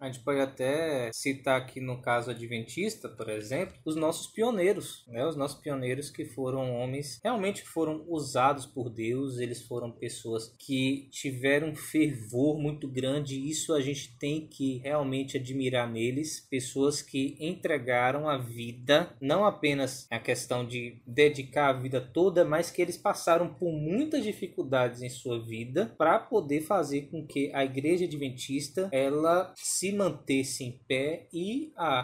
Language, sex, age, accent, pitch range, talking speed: Portuguese, male, 20-39, Brazilian, 130-160 Hz, 155 wpm